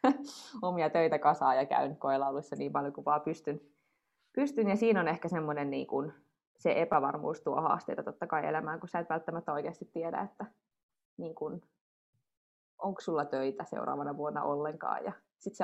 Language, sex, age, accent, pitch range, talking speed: Finnish, female, 20-39, native, 150-175 Hz, 155 wpm